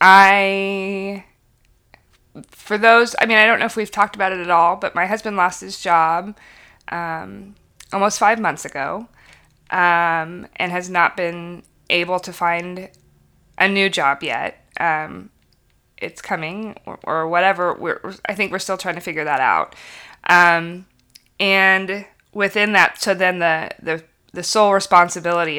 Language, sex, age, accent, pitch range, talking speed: English, female, 20-39, American, 160-195 Hz, 150 wpm